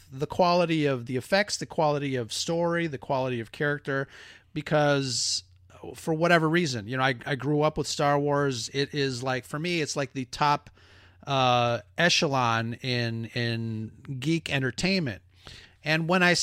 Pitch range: 125-165 Hz